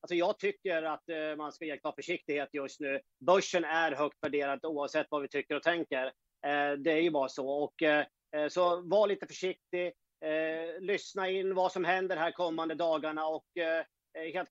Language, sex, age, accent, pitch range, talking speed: English, male, 40-59, Swedish, 150-170 Hz, 170 wpm